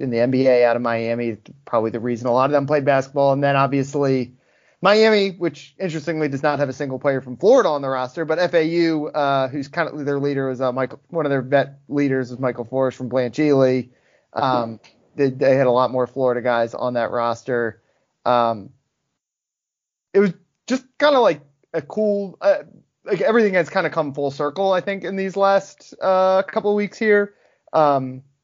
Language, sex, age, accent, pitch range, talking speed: English, male, 30-49, American, 125-165 Hz, 200 wpm